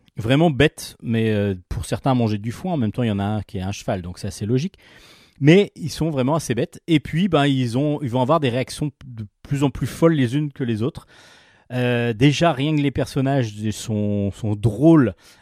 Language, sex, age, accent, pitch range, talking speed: French, male, 40-59, French, 110-140 Hz, 240 wpm